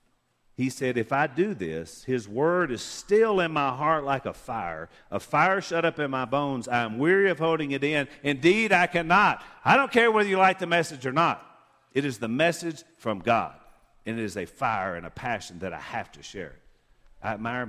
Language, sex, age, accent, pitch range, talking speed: English, male, 50-69, American, 115-155 Hz, 215 wpm